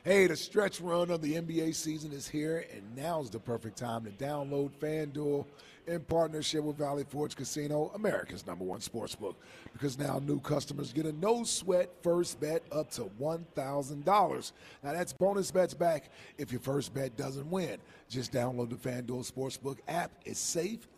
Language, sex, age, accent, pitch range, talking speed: English, male, 40-59, American, 145-180 Hz, 170 wpm